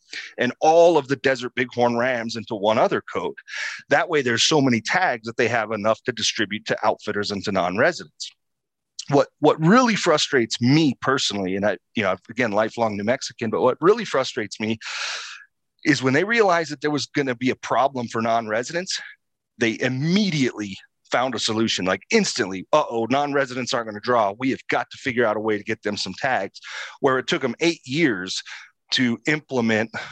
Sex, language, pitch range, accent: male, English, 110-150 Hz, American